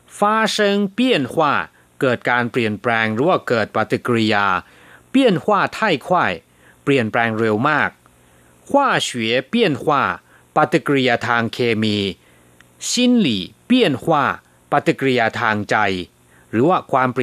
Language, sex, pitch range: Thai, male, 95-140 Hz